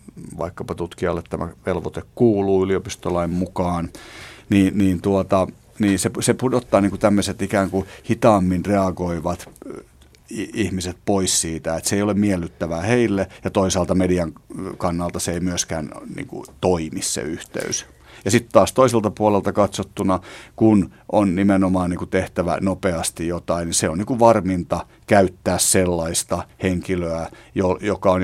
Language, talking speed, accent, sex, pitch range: Finnish, 120 wpm, native, male, 85-100 Hz